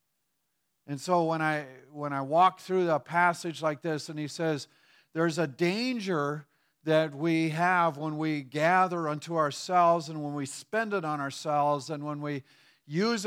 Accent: American